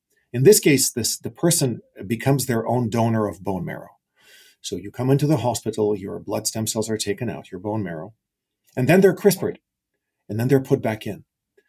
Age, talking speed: 40-59, 195 wpm